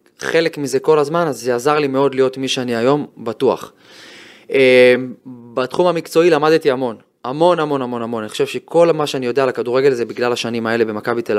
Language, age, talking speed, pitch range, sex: Hebrew, 20-39, 195 wpm, 125-150 Hz, male